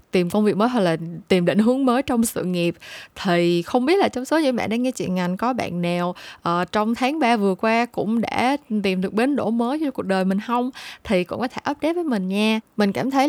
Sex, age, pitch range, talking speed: female, 10-29, 185-255 Hz, 255 wpm